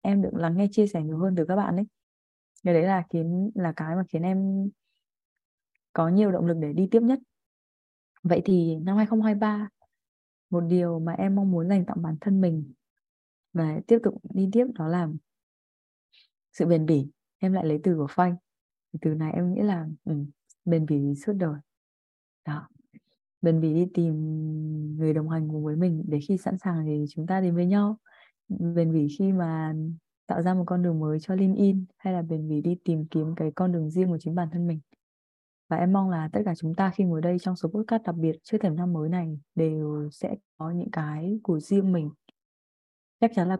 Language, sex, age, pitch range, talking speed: Vietnamese, female, 20-39, 155-195 Hz, 205 wpm